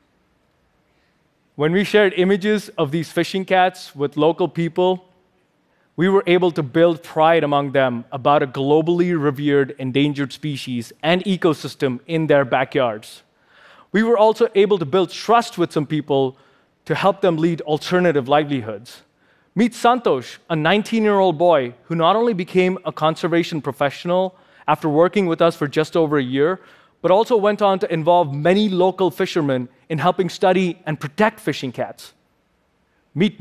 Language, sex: Korean, male